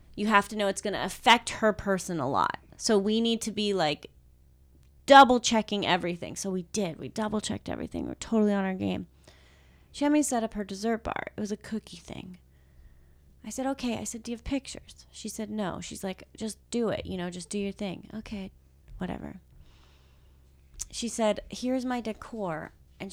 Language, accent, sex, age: English, American, female, 30-49